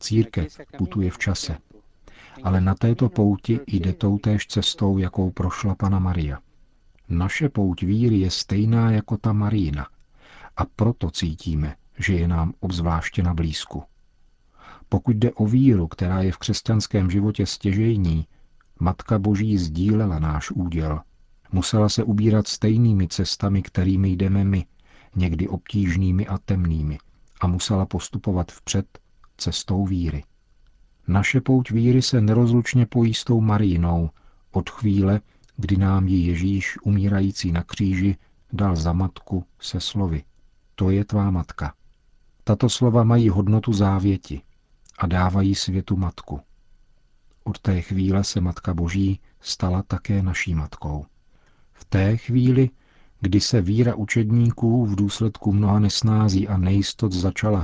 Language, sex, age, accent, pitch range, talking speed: Czech, male, 50-69, native, 90-110 Hz, 130 wpm